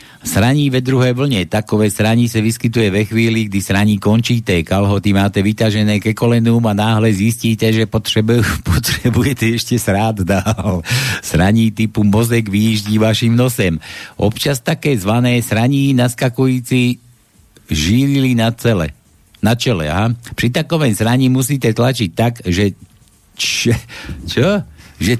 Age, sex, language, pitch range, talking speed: 60-79, male, Slovak, 110-130 Hz, 125 wpm